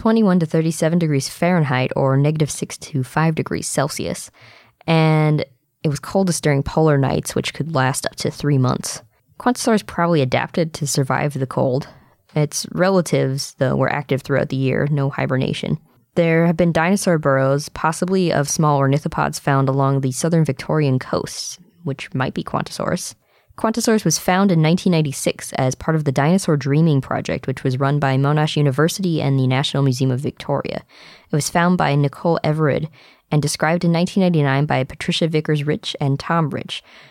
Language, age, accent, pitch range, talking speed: English, 20-39, American, 135-165 Hz, 165 wpm